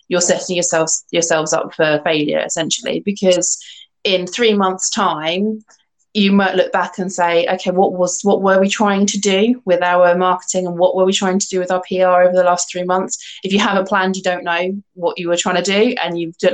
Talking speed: 225 wpm